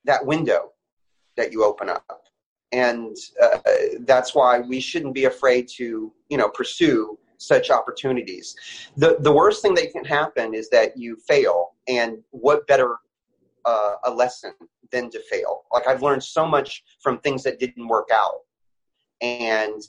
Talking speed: 155 wpm